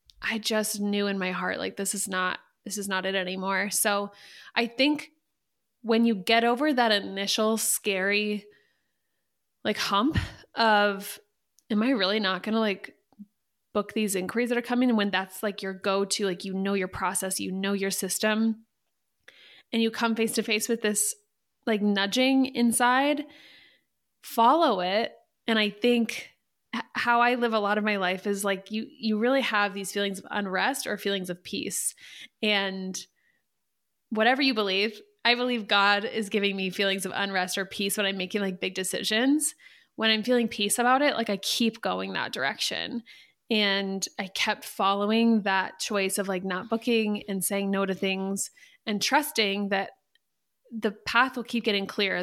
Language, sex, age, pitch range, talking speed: English, female, 20-39, 195-230 Hz, 175 wpm